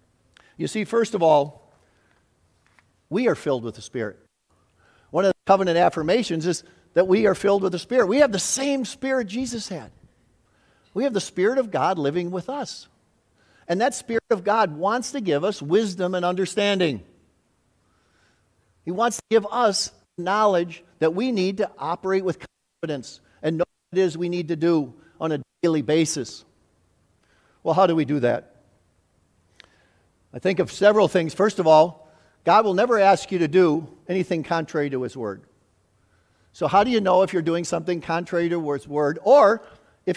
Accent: American